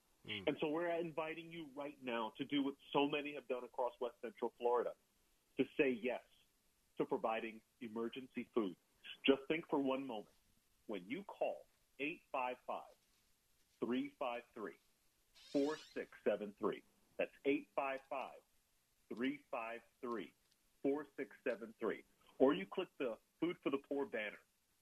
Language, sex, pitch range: English, male, 120-160 Hz